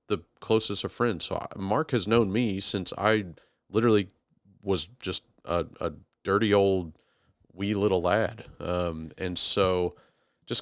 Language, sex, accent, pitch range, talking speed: English, male, American, 85-100 Hz, 140 wpm